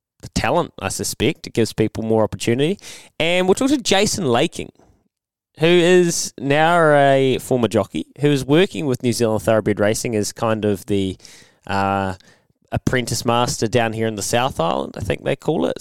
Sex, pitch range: male, 110-135 Hz